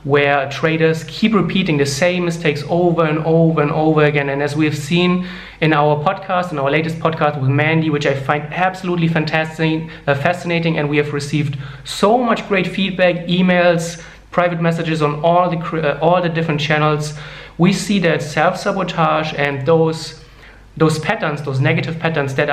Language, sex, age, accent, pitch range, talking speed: English, male, 30-49, German, 145-170 Hz, 175 wpm